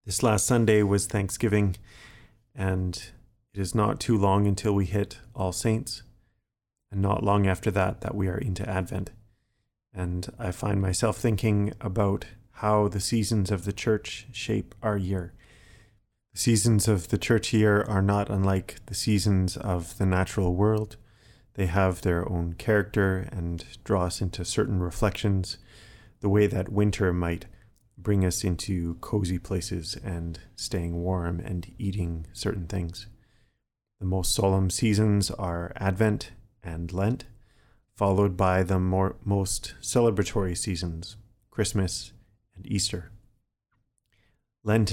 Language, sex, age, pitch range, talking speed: English, male, 30-49, 95-110 Hz, 140 wpm